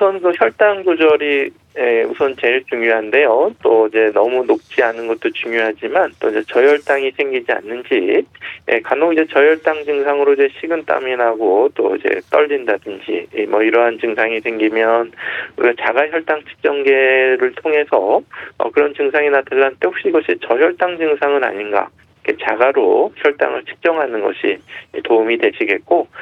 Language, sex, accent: Korean, male, native